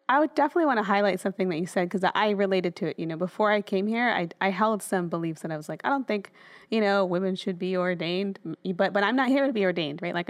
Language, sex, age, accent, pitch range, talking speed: English, female, 20-39, American, 180-215 Hz, 285 wpm